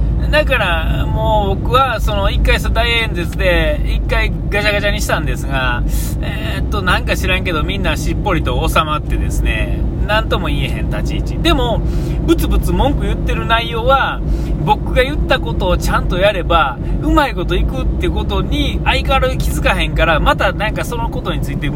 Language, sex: Japanese, male